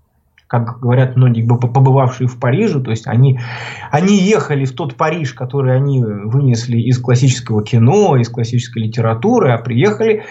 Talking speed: 145 wpm